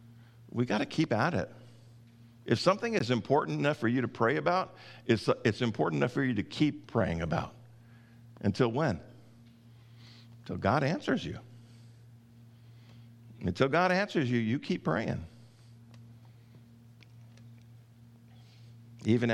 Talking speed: 125 wpm